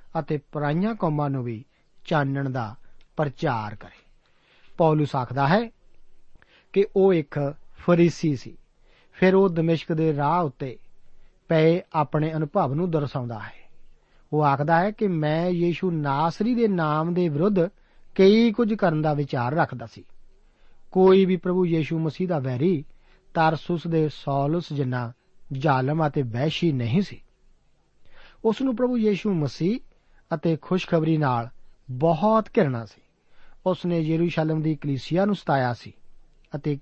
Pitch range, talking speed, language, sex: 140-180 Hz, 95 wpm, Punjabi, male